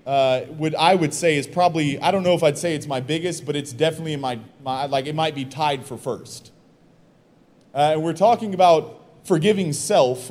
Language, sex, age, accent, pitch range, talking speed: English, male, 30-49, American, 150-190 Hz, 210 wpm